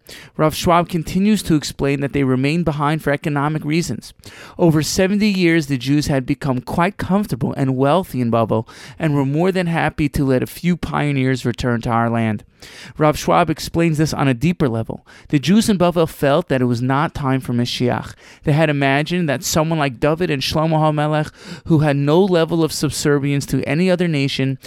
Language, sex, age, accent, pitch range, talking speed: English, male, 30-49, American, 130-165 Hz, 190 wpm